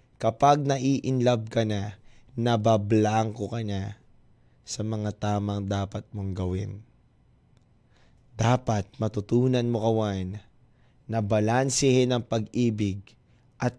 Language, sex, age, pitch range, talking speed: Filipino, male, 20-39, 110-145 Hz, 90 wpm